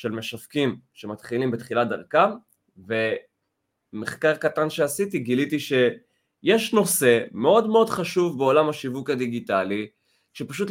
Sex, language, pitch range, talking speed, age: male, Hebrew, 115-155 Hz, 100 wpm, 20-39